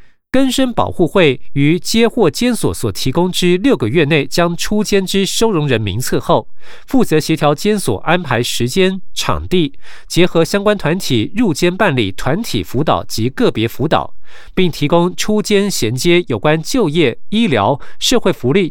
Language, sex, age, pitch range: Chinese, male, 50-69, 135-200 Hz